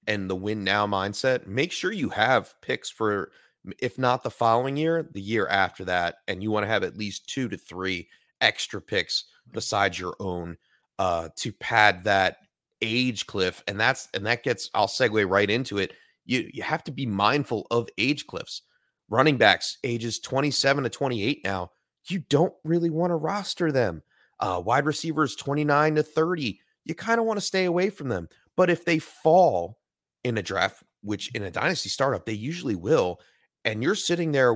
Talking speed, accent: 190 wpm, American